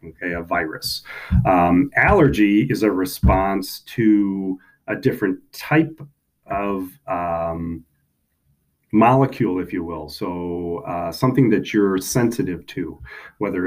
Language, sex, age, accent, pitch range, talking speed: English, male, 40-59, American, 85-115 Hz, 115 wpm